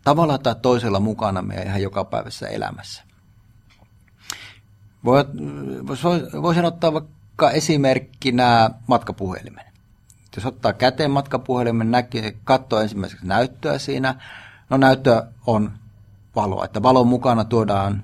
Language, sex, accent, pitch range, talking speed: Finnish, male, native, 105-125 Hz, 100 wpm